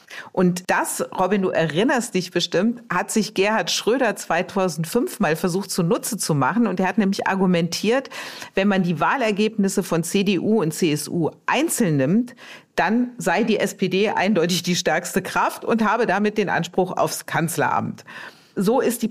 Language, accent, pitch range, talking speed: German, German, 165-215 Hz, 155 wpm